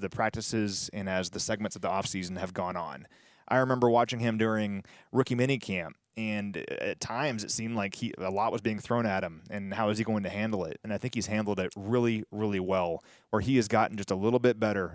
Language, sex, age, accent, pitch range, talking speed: English, male, 30-49, American, 105-125 Hz, 235 wpm